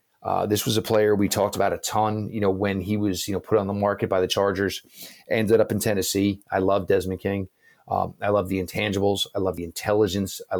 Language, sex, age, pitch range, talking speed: English, male, 30-49, 100-115 Hz, 240 wpm